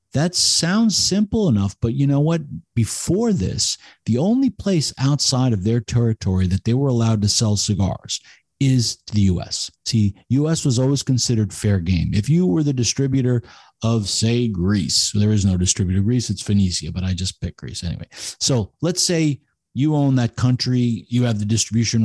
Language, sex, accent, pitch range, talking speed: English, male, American, 105-135 Hz, 180 wpm